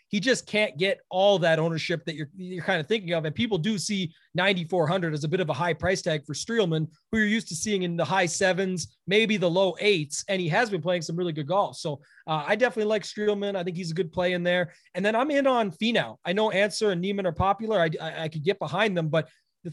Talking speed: 265 wpm